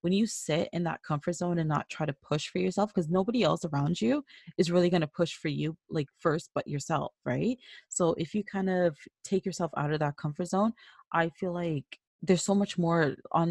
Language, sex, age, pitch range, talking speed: English, female, 20-39, 150-180 Hz, 225 wpm